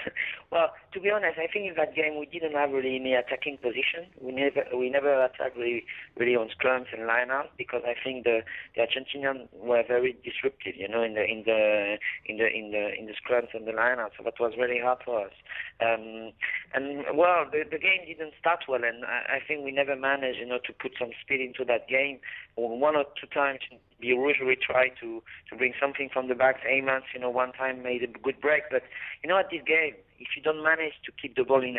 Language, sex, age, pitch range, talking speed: English, male, 30-49, 120-140 Hz, 230 wpm